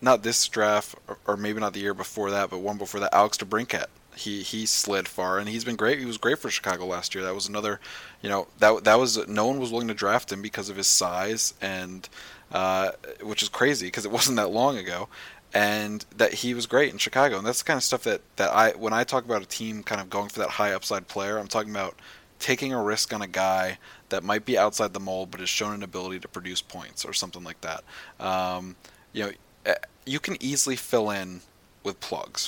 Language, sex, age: English, male, 20-39